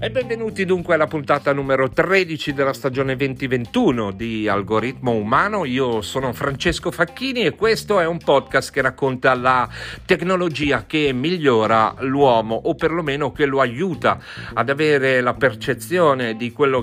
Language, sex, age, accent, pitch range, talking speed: Italian, male, 40-59, native, 115-155 Hz, 145 wpm